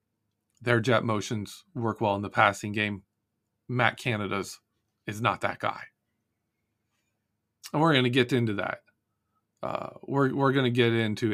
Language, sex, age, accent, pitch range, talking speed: English, male, 40-59, American, 110-130 Hz, 150 wpm